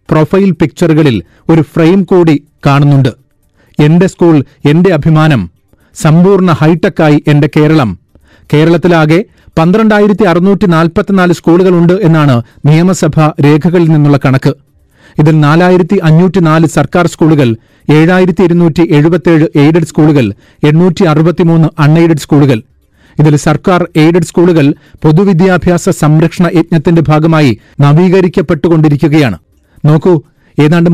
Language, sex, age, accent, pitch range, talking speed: Malayalam, male, 30-49, native, 150-175 Hz, 85 wpm